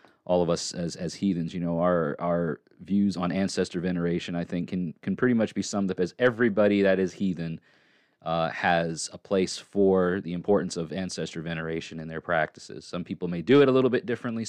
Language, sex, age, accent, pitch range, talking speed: English, male, 30-49, American, 85-105 Hz, 205 wpm